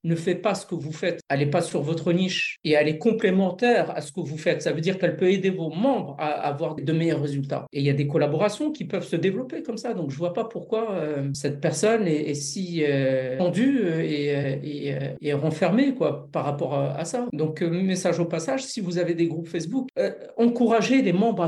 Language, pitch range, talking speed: French, 155-210 Hz, 240 wpm